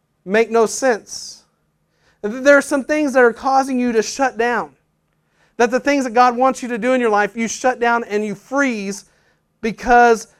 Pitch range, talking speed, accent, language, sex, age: 210-260 Hz, 190 wpm, American, English, male, 40-59